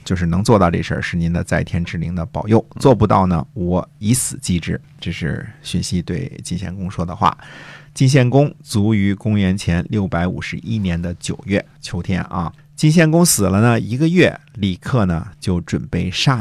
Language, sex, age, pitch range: Chinese, male, 50-69, 95-145 Hz